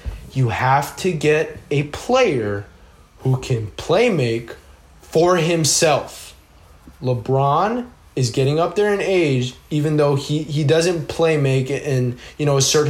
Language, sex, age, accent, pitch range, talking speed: English, male, 20-39, American, 125-170 Hz, 130 wpm